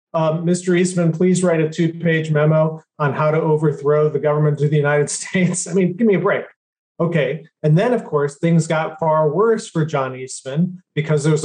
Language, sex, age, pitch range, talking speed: English, male, 30-49, 145-175 Hz, 210 wpm